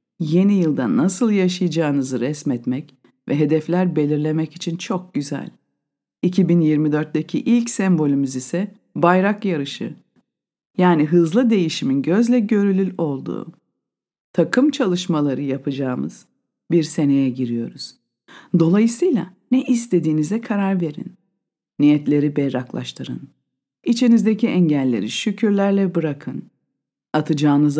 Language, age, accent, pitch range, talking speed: Turkish, 50-69, native, 145-210 Hz, 90 wpm